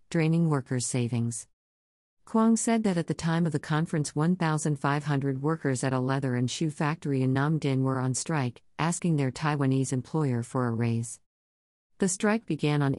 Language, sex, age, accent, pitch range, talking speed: English, female, 50-69, American, 130-160 Hz, 170 wpm